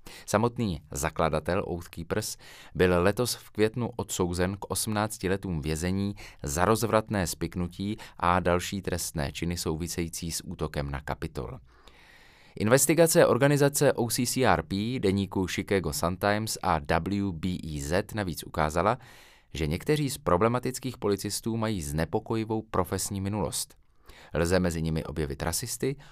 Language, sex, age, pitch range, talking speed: Czech, male, 30-49, 80-110 Hz, 115 wpm